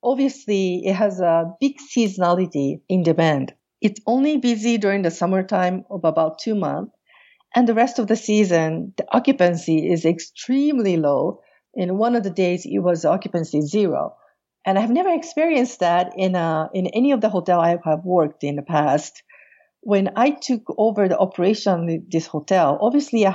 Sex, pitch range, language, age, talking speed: female, 170-230 Hz, English, 50-69, 170 wpm